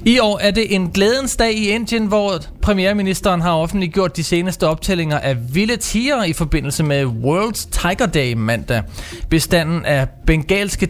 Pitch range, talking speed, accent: 125-190 Hz, 160 wpm, native